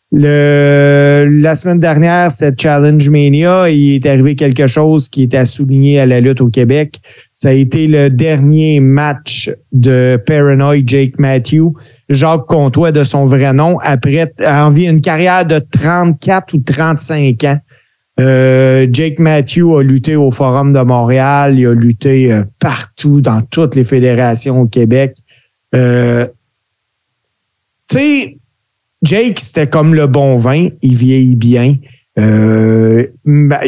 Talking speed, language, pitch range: 145 wpm, French, 130-150 Hz